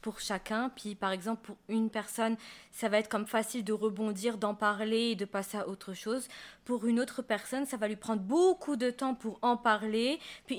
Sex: female